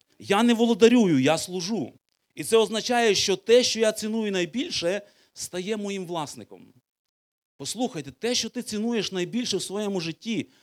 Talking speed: 145 wpm